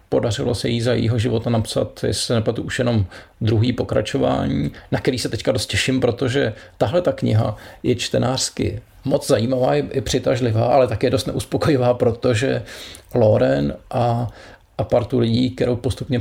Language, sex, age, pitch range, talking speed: Czech, male, 40-59, 105-125 Hz, 160 wpm